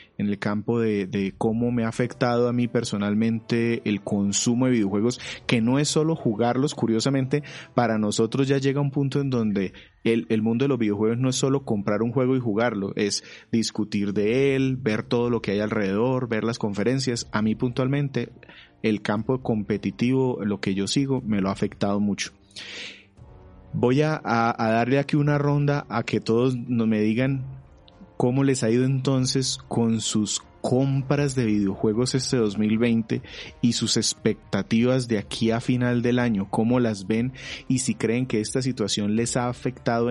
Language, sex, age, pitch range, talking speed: Spanish, male, 30-49, 110-130 Hz, 175 wpm